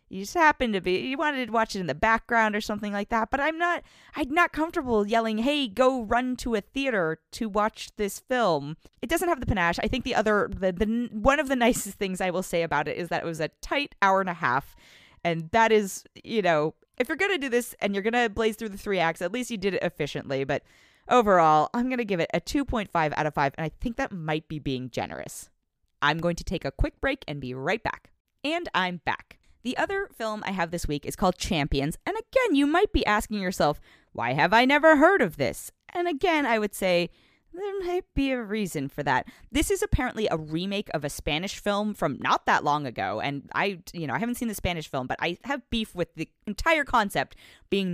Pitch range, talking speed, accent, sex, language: 165-255 Hz, 245 wpm, American, female, English